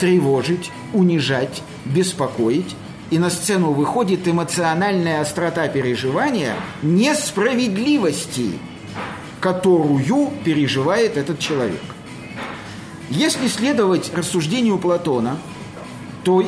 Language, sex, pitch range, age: Russian, male, 155-210 Hz, 50-69